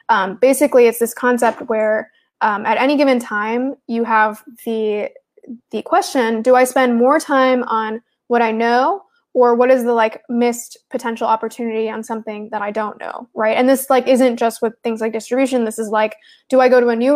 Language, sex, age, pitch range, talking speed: English, female, 20-39, 220-255 Hz, 205 wpm